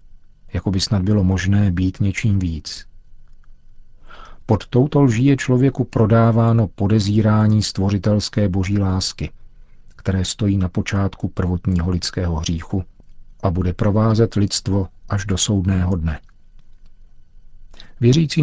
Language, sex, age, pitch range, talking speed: Czech, male, 50-69, 95-110 Hz, 110 wpm